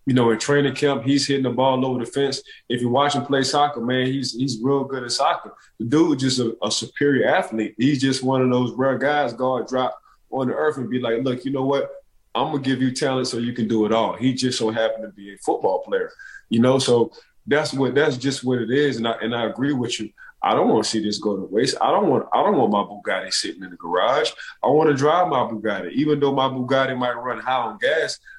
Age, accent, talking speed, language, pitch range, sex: 20-39, American, 270 wpm, English, 115-140 Hz, male